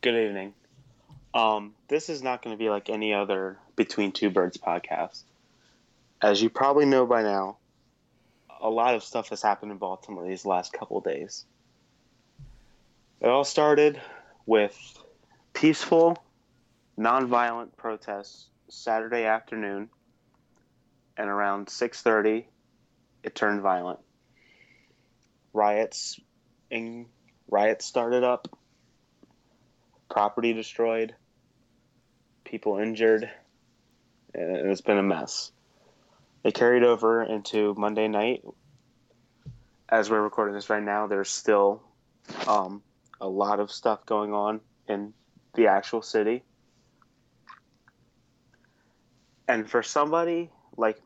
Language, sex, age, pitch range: English, male, 30-49, 105-120 Hz